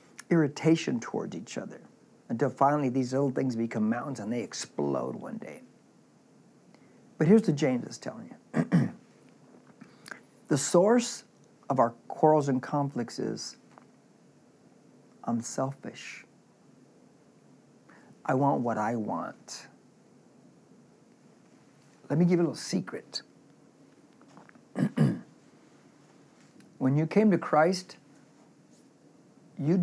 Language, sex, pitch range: English, male, 140-190 Hz